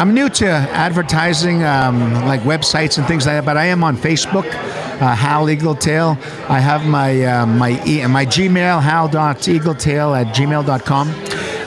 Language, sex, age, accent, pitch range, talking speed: English, male, 50-69, American, 130-160 Hz, 160 wpm